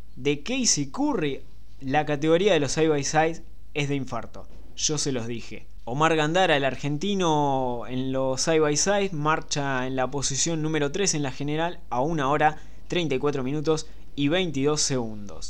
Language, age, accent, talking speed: Spanish, 20-39, Argentinian, 165 wpm